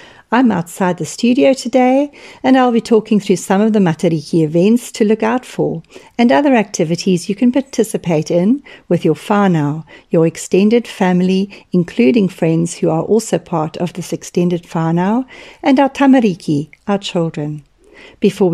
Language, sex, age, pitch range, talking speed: English, female, 50-69, 170-230 Hz, 155 wpm